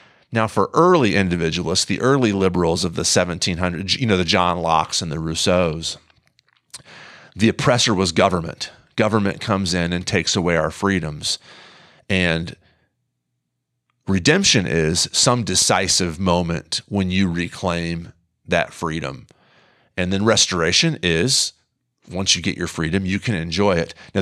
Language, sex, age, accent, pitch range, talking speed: English, male, 40-59, American, 85-105 Hz, 135 wpm